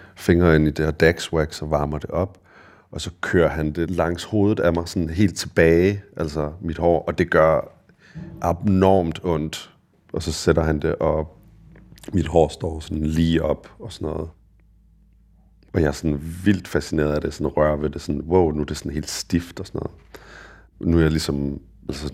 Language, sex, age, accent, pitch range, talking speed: Danish, male, 30-49, native, 75-85 Hz, 195 wpm